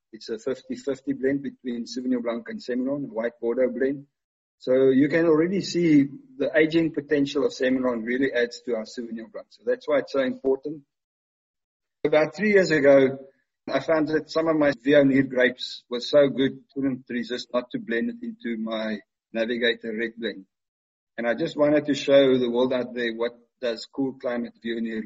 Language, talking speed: English, 180 wpm